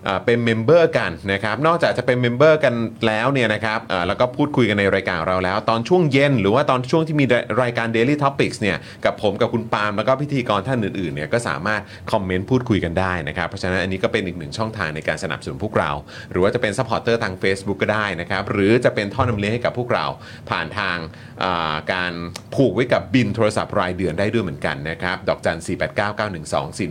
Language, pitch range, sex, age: Thai, 95-130 Hz, male, 30-49